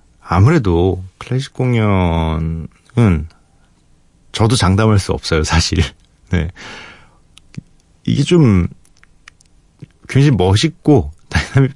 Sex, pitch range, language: male, 85-120 Hz, Korean